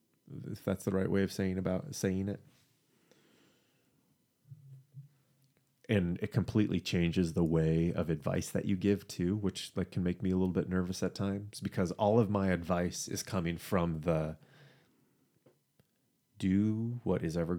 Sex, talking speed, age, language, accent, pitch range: male, 155 wpm, 30-49, English, American, 85-120 Hz